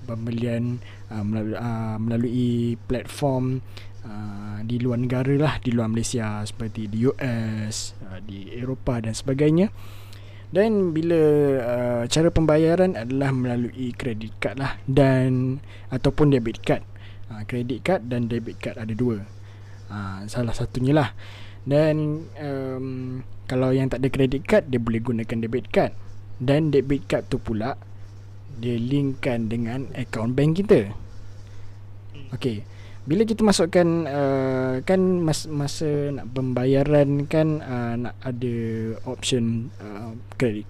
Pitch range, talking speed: 105-135 Hz, 130 wpm